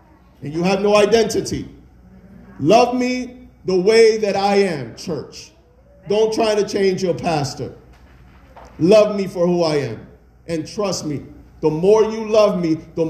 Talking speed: 155 wpm